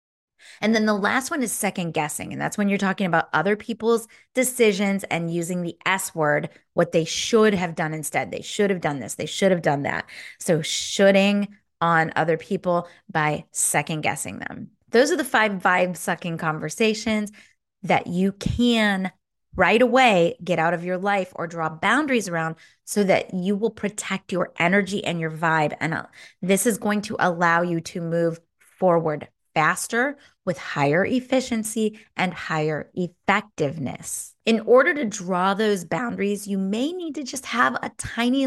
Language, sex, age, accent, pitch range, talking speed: English, female, 20-39, American, 170-220 Hz, 165 wpm